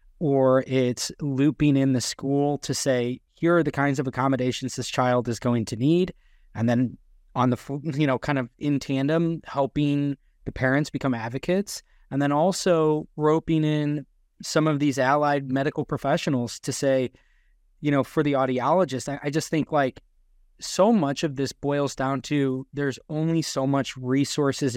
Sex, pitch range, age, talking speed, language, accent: male, 130-150 Hz, 20-39, 165 wpm, English, American